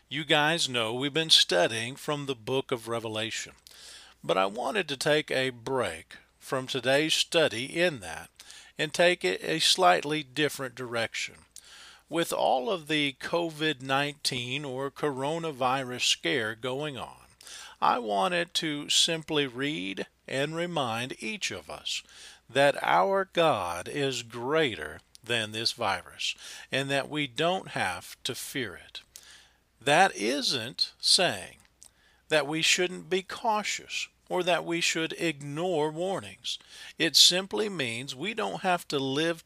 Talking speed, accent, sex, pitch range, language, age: 135 wpm, American, male, 130-165 Hz, English, 50-69